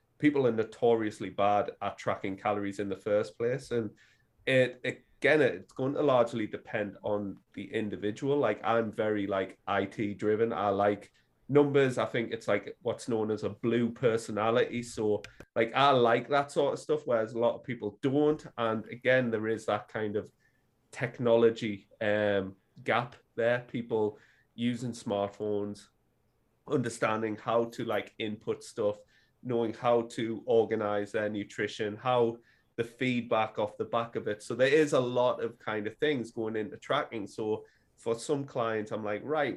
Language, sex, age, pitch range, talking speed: English, male, 30-49, 105-125 Hz, 165 wpm